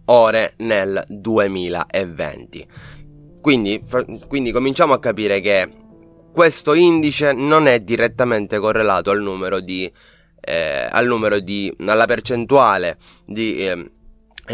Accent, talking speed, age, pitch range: native, 110 wpm, 20-39, 100-125 Hz